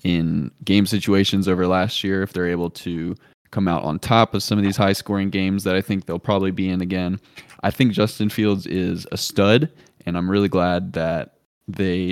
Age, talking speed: 20-39, 210 wpm